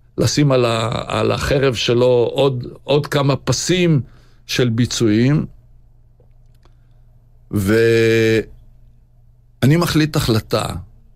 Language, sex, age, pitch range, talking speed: Hebrew, male, 60-79, 115-135 Hz, 80 wpm